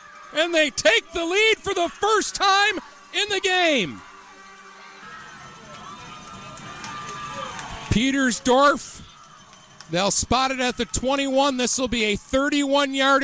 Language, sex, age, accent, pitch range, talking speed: English, male, 50-69, American, 240-315 Hz, 105 wpm